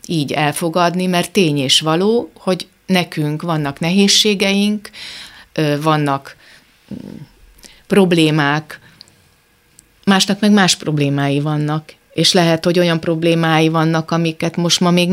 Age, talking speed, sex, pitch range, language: 30-49, 105 wpm, female, 155-180 Hz, Hungarian